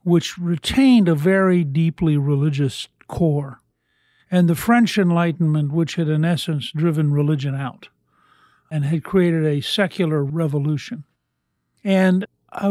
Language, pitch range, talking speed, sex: English, 150-180 Hz, 125 wpm, male